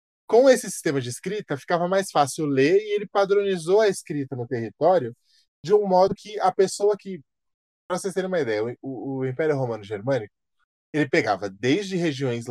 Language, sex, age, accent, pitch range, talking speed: Portuguese, male, 20-39, Brazilian, 120-185 Hz, 175 wpm